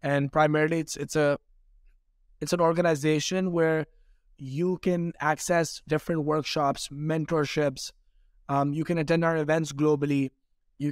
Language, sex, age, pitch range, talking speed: Urdu, male, 20-39, 145-170 Hz, 125 wpm